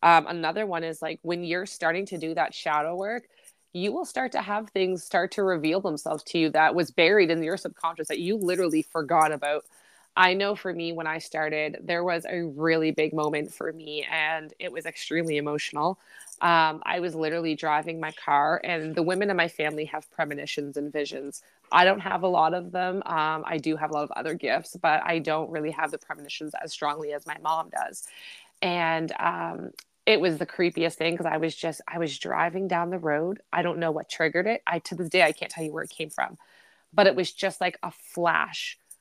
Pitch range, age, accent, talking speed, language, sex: 155-185 Hz, 20-39, American, 220 wpm, English, female